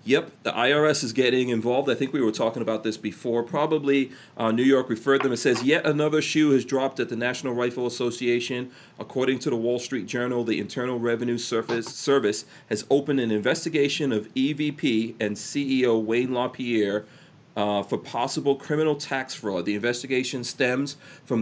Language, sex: English, male